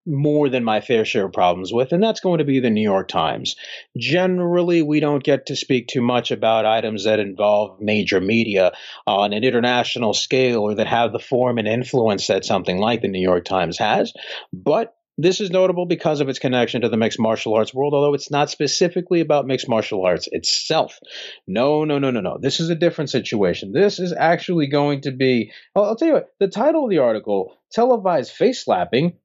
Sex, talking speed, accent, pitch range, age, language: male, 205 wpm, American, 115-170 Hz, 40-59, English